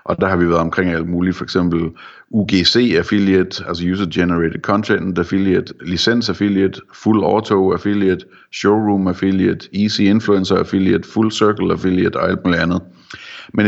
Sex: male